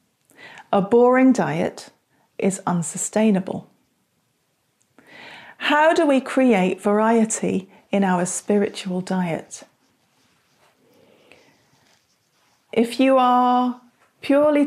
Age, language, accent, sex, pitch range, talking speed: 40-59, English, British, female, 190-225 Hz, 75 wpm